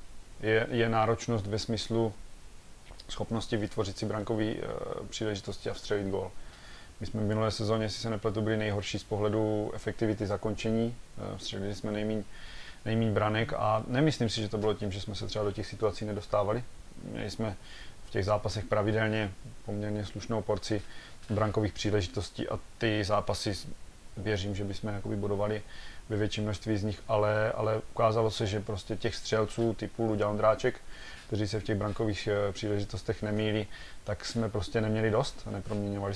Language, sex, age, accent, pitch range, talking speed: Czech, male, 30-49, native, 100-110 Hz, 155 wpm